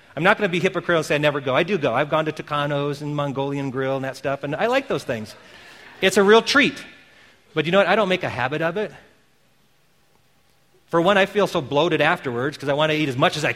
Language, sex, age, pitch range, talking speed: English, male, 40-59, 155-215 Hz, 265 wpm